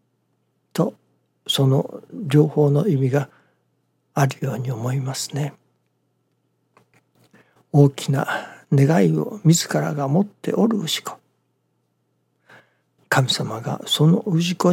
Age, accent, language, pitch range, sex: 60-79, native, Japanese, 135-170 Hz, male